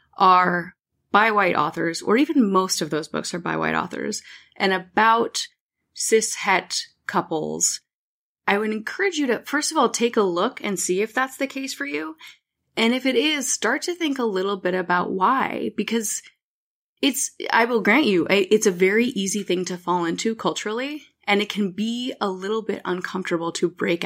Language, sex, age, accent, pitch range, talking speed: English, female, 20-39, American, 175-230 Hz, 185 wpm